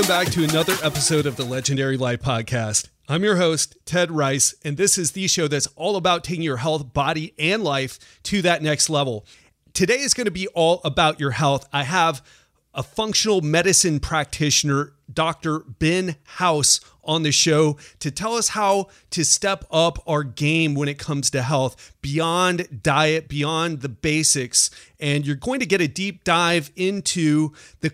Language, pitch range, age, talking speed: English, 145-180 Hz, 30-49, 180 wpm